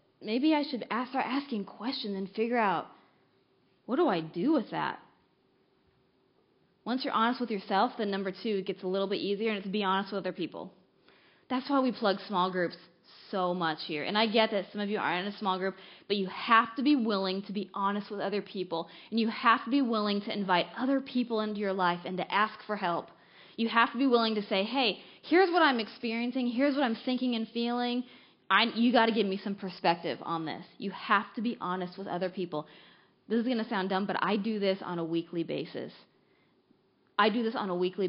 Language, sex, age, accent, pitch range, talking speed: English, female, 10-29, American, 190-230 Hz, 225 wpm